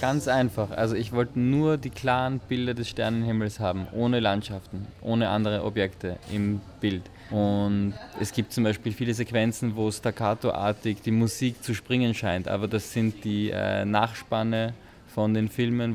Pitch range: 105-120 Hz